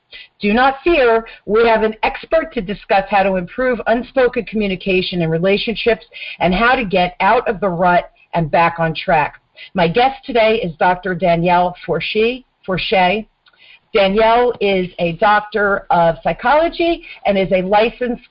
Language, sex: English, female